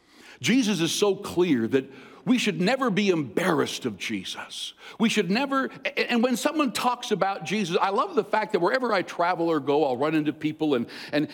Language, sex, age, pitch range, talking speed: English, male, 60-79, 135-205 Hz, 195 wpm